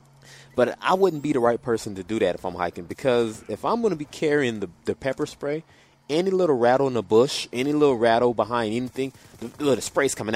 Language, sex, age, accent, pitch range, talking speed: English, male, 20-39, American, 100-135 Hz, 225 wpm